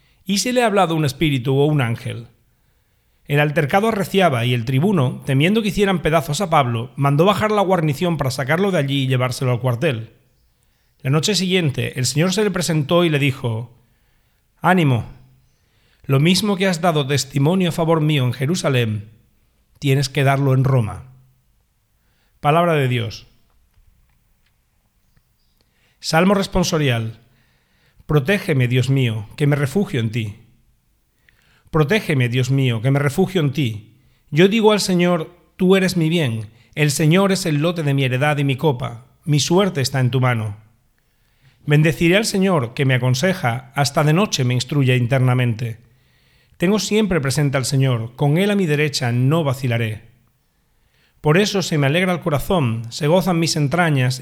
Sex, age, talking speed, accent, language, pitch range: male, 40-59, 160 wpm, Spanish, Spanish, 125-170 Hz